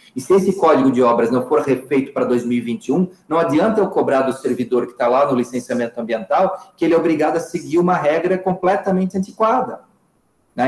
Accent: Brazilian